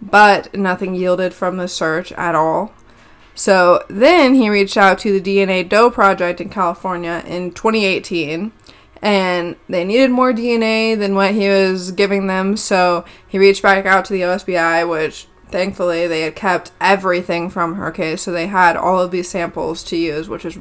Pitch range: 170-205 Hz